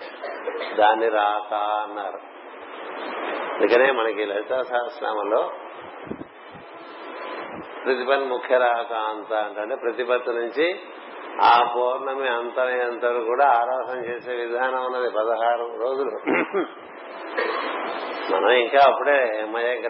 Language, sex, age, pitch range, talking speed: Telugu, male, 50-69, 120-140 Hz, 80 wpm